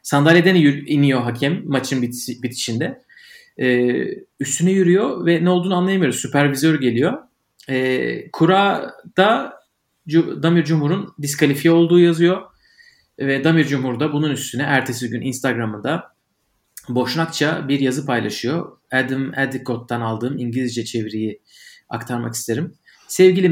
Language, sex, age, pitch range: Turkish, male, 40-59, 125-170 Hz